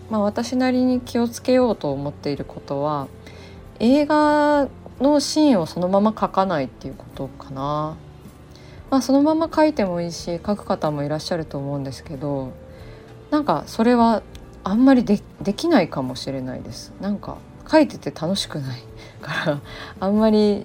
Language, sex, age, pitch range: Japanese, female, 20-39, 135-205 Hz